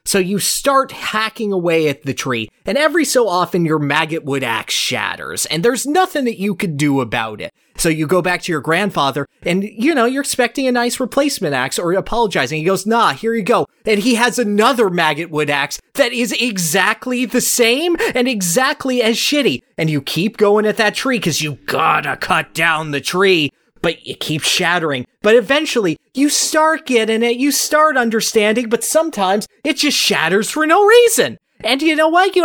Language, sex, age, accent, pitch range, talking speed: English, male, 30-49, American, 180-265 Hz, 190 wpm